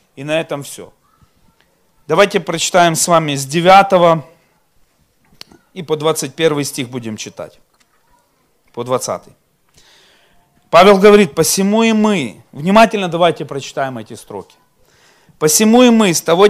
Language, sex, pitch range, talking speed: Russian, male, 150-205 Hz, 120 wpm